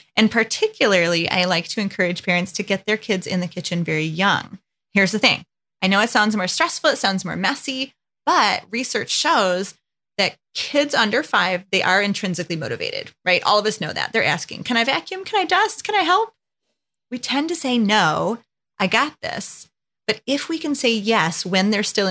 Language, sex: English, female